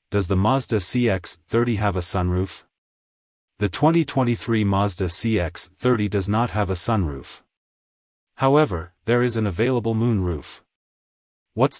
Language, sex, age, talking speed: English, male, 30-49, 115 wpm